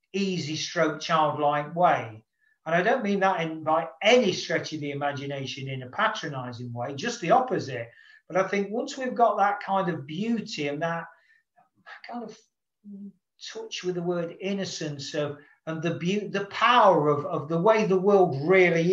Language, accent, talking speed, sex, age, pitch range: English, British, 175 wpm, male, 50-69, 150-205 Hz